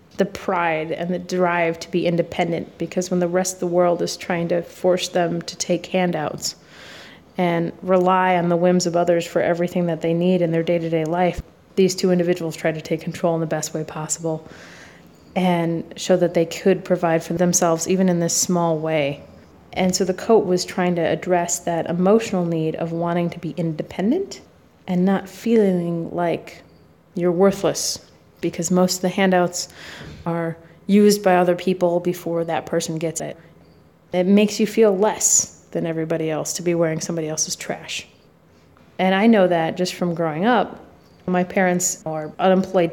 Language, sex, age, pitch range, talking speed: English, female, 30-49, 165-185 Hz, 180 wpm